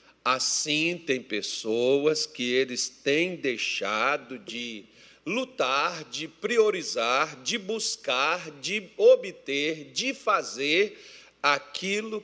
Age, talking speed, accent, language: 50-69, 90 wpm, Brazilian, Portuguese